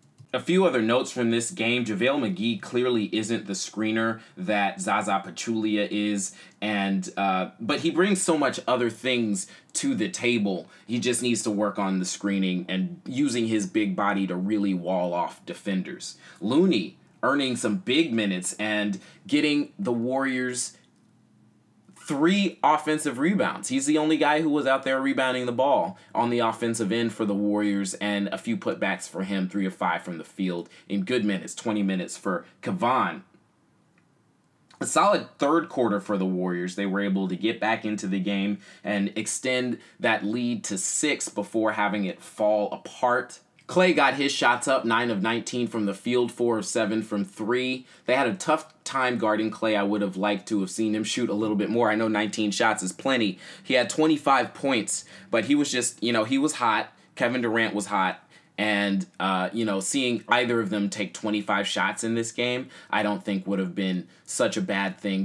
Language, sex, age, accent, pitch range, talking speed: English, male, 30-49, American, 100-125 Hz, 190 wpm